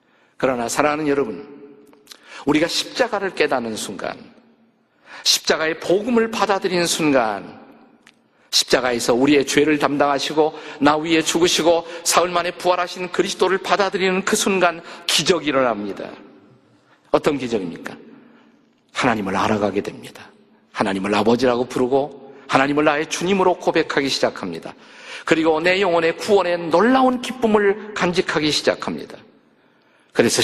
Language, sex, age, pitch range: Korean, male, 50-69, 145-195 Hz